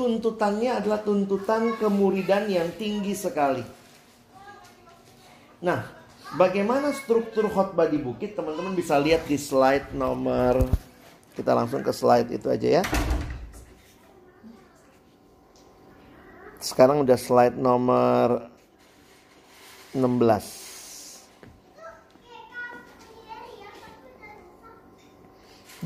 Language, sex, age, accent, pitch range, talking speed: Indonesian, male, 50-69, native, 125-190 Hz, 70 wpm